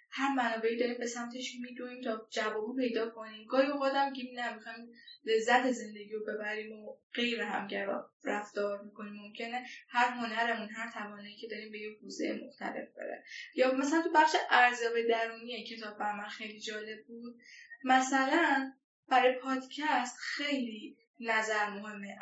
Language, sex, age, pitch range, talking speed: Persian, female, 10-29, 225-285 Hz, 145 wpm